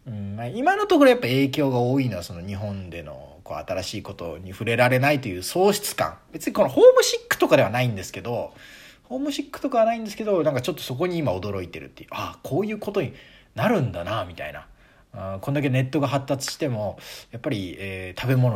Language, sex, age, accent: Japanese, male, 40-59, native